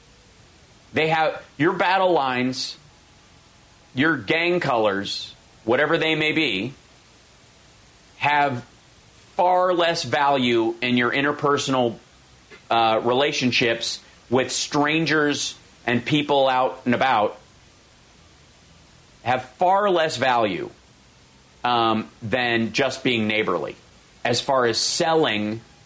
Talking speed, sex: 95 wpm, male